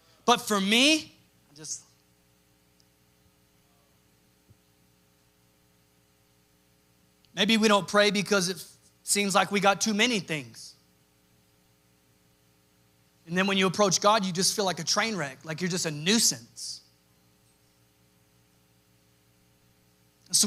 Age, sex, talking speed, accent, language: 30-49, male, 110 wpm, American, English